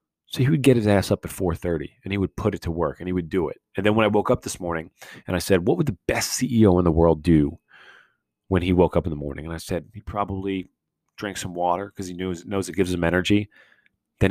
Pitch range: 90-110 Hz